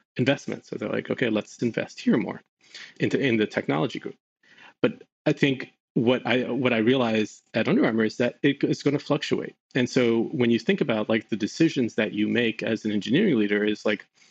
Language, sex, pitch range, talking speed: English, male, 105-130 Hz, 210 wpm